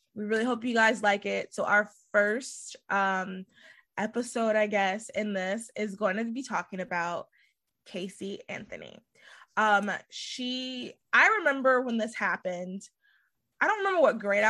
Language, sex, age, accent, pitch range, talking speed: English, female, 20-39, American, 200-245 Hz, 150 wpm